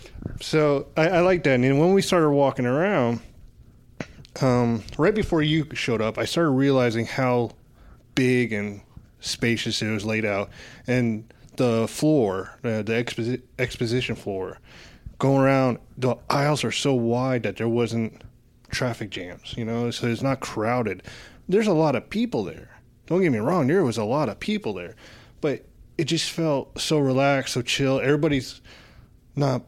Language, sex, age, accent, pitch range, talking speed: English, male, 20-39, American, 115-140 Hz, 160 wpm